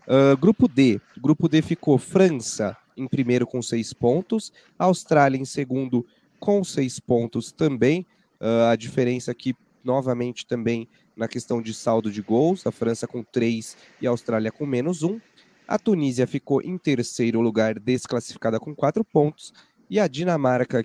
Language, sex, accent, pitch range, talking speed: Portuguese, male, Brazilian, 120-170 Hz, 155 wpm